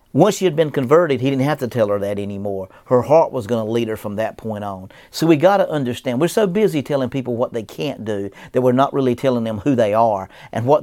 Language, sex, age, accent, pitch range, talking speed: English, male, 50-69, American, 115-145 Hz, 270 wpm